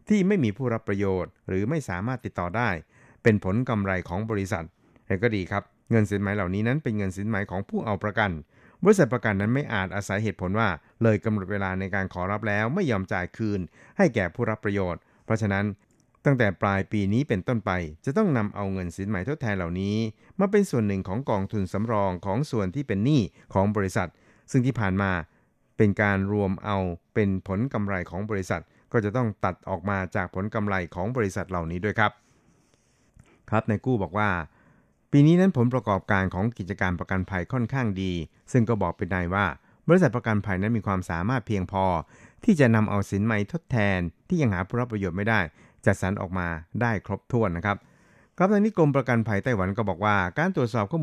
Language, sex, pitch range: Thai, male, 95-115 Hz